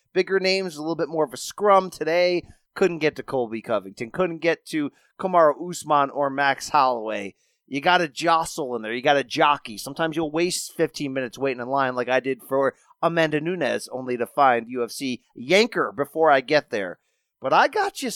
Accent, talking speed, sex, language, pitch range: American, 200 wpm, male, English, 125-175 Hz